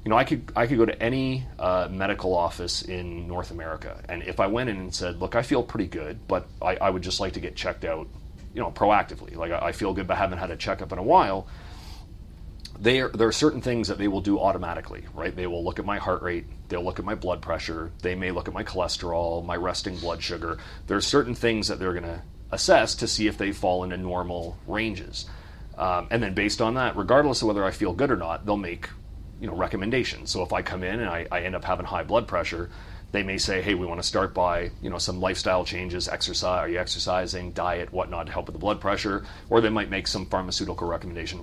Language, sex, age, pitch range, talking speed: English, male, 30-49, 90-105 Hz, 250 wpm